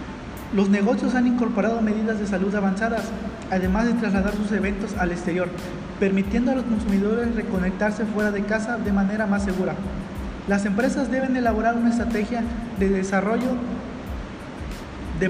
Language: Spanish